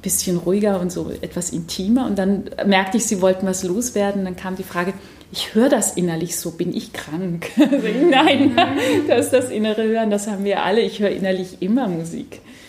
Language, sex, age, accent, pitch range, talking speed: German, female, 30-49, German, 185-220 Hz, 200 wpm